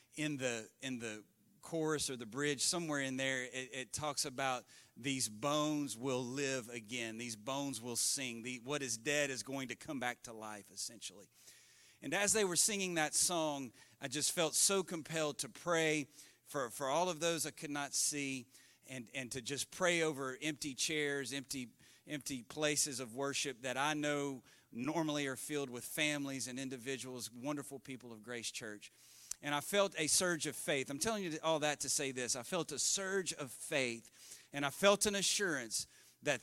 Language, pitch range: English, 130-155 Hz